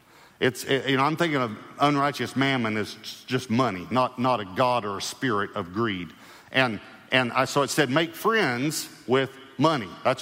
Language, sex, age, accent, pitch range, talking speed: English, male, 50-69, American, 120-155 Hz, 190 wpm